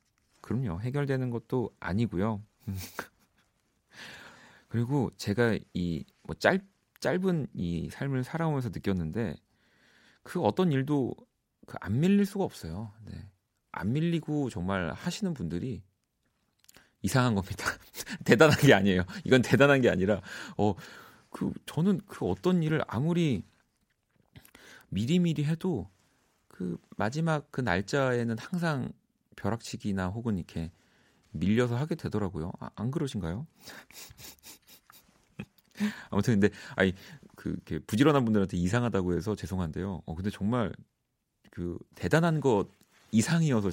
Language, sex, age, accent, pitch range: Korean, male, 40-59, native, 95-140 Hz